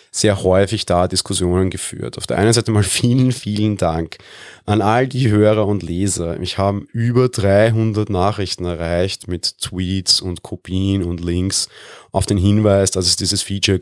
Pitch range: 95-110 Hz